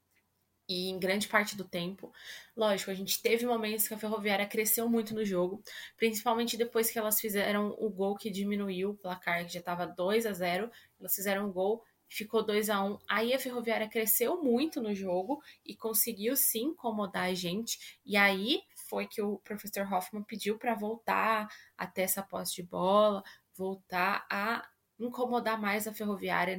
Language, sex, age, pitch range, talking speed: Portuguese, female, 10-29, 195-235 Hz, 175 wpm